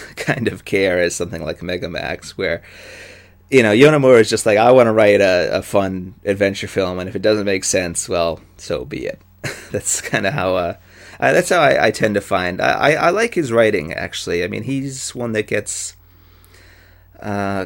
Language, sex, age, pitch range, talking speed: English, male, 30-49, 90-110 Hz, 205 wpm